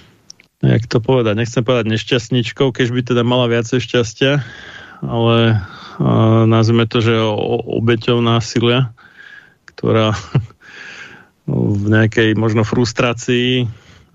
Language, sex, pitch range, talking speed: Slovak, male, 110-120 Hz, 100 wpm